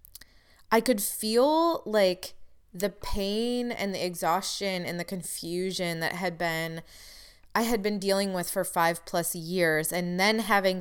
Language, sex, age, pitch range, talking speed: English, female, 20-39, 160-195 Hz, 150 wpm